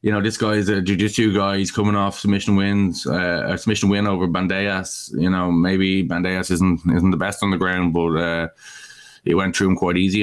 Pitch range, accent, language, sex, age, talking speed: 90-100 Hz, Irish, English, male, 20-39, 225 wpm